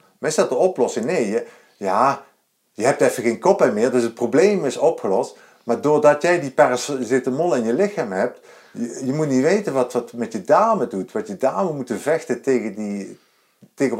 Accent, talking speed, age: Dutch, 205 wpm, 50-69